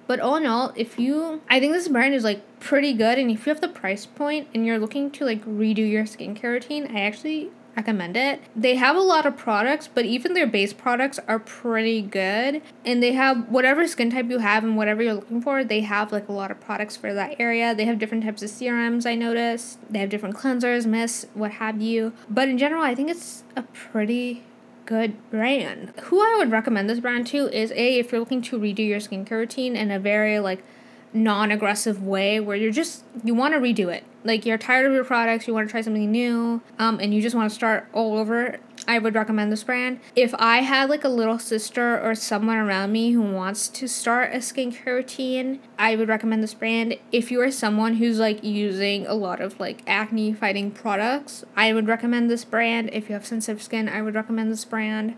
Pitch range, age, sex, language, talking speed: 215-250 Hz, 10-29, female, English, 225 wpm